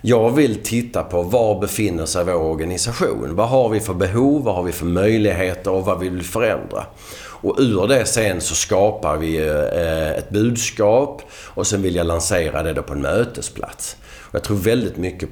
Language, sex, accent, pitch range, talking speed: Swedish, male, native, 85-105 Hz, 185 wpm